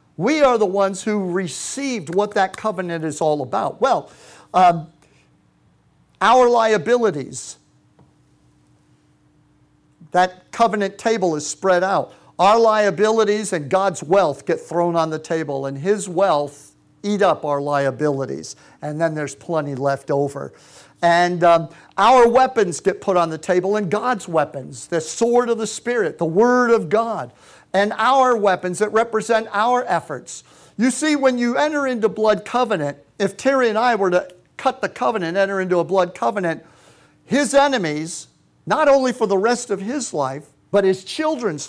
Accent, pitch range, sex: American, 165-230 Hz, male